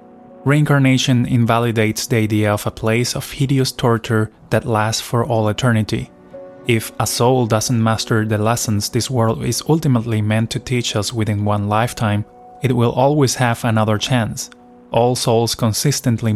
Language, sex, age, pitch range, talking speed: English, male, 20-39, 110-125 Hz, 155 wpm